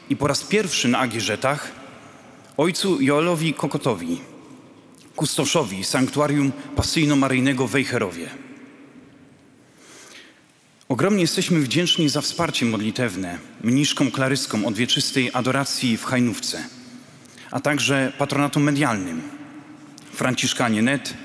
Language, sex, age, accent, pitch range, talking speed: Polish, male, 40-59, native, 125-150 Hz, 85 wpm